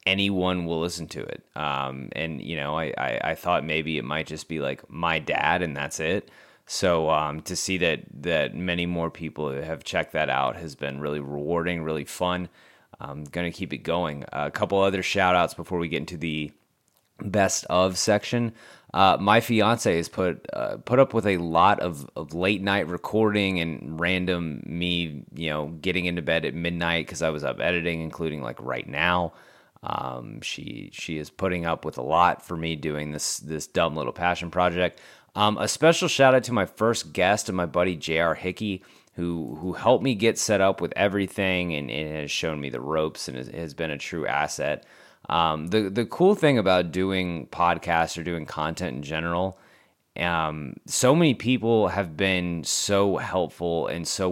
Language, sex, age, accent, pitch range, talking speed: English, male, 30-49, American, 80-95 Hz, 190 wpm